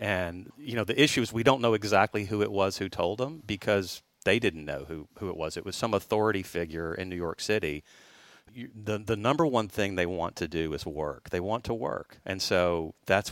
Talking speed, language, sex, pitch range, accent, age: 230 wpm, English, male, 85-105 Hz, American, 40-59